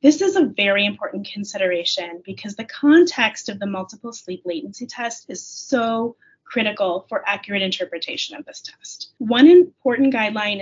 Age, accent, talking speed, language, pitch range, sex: 30-49, American, 155 wpm, English, 195-255 Hz, female